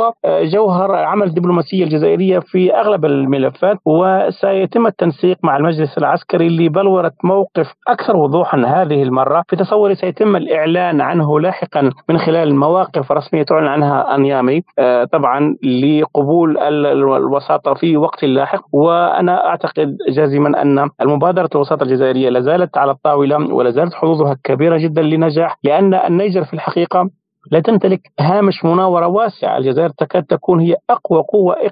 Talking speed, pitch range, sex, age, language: 130 wpm, 150-185 Hz, male, 40-59, Arabic